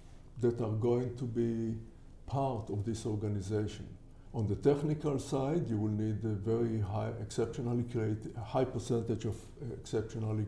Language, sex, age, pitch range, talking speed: English, male, 60-79, 110-125 Hz, 150 wpm